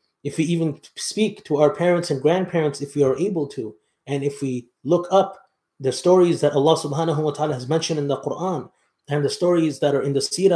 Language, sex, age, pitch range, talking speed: English, male, 30-49, 135-170 Hz, 220 wpm